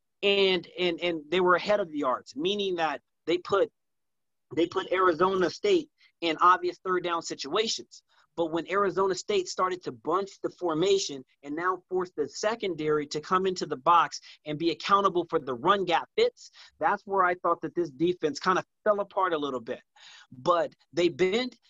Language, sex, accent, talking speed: English, male, American, 185 wpm